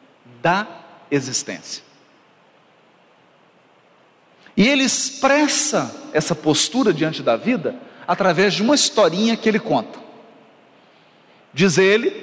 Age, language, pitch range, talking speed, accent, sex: 50-69, Portuguese, 220-290 Hz, 95 wpm, Brazilian, male